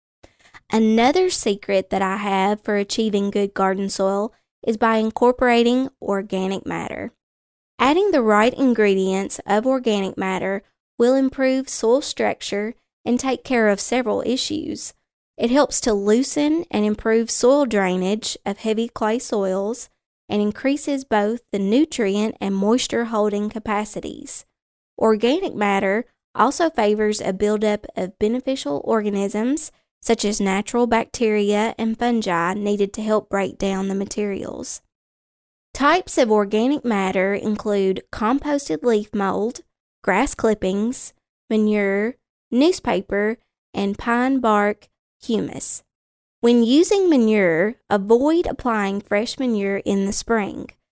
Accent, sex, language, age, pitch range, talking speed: American, female, English, 20-39, 200-245 Hz, 120 wpm